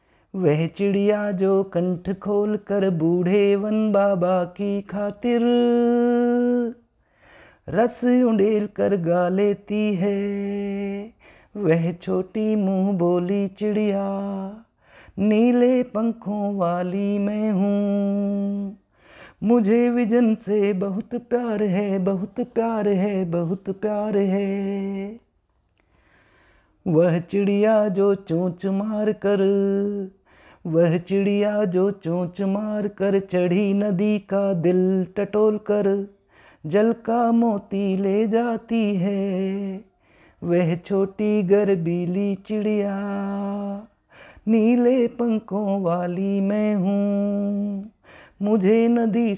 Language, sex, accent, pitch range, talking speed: Hindi, male, native, 195-215 Hz, 90 wpm